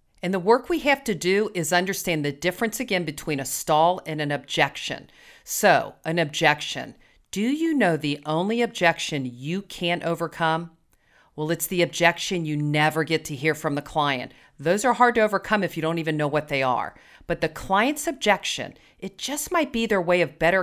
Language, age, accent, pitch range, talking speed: English, 40-59, American, 155-210 Hz, 195 wpm